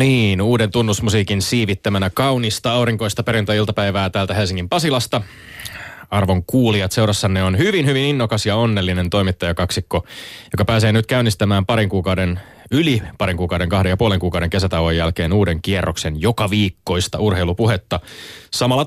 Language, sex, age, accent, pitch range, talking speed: Finnish, male, 20-39, native, 95-115 Hz, 130 wpm